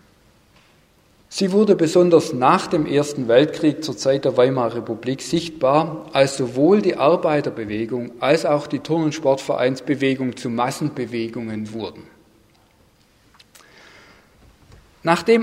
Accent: German